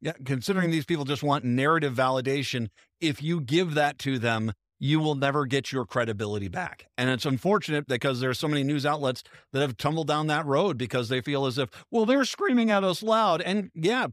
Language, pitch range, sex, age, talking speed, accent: English, 125-160 Hz, male, 50-69, 210 wpm, American